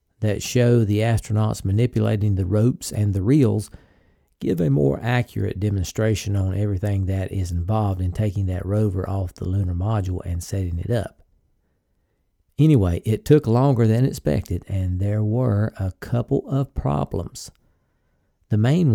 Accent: American